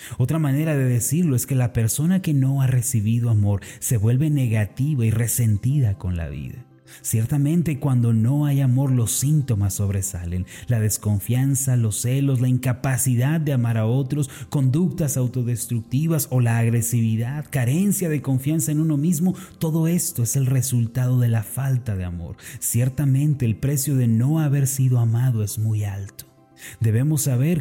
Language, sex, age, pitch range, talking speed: Spanish, male, 30-49, 115-145 Hz, 160 wpm